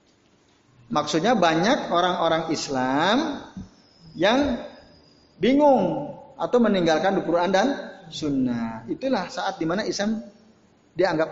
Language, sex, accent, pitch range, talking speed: Indonesian, male, native, 160-250 Hz, 90 wpm